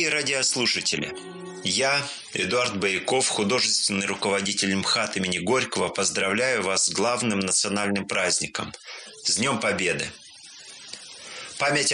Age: 30-49